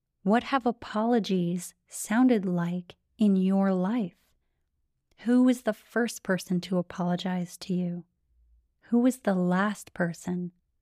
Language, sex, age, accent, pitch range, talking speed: English, female, 30-49, American, 180-215 Hz, 120 wpm